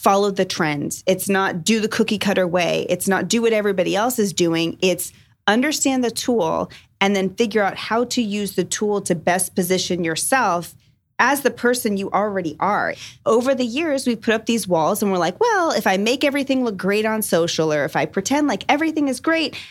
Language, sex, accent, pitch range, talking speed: English, female, American, 185-245 Hz, 210 wpm